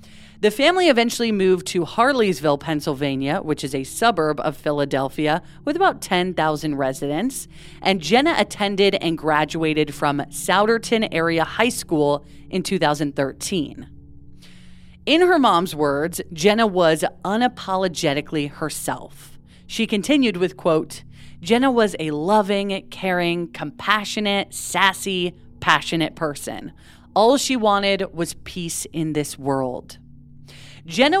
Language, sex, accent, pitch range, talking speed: English, female, American, 150-210 Hz, 115 wpm